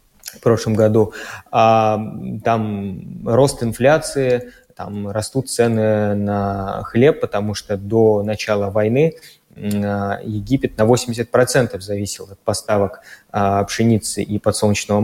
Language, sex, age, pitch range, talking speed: Russian, male, 20-39, 100-115 Hz, 100 wpm